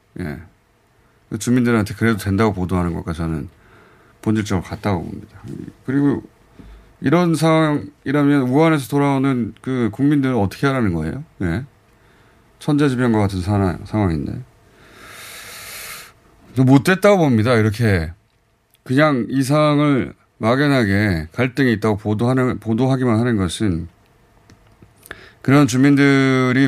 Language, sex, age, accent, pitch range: Korean, male, 30-49, native, 100-140 Hz